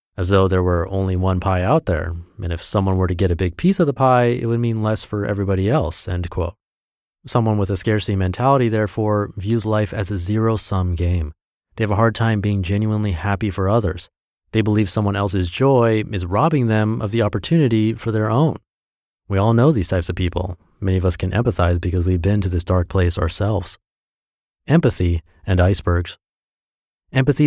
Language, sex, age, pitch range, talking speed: English, male, 30-49, 95-115 Hz, 195 wpm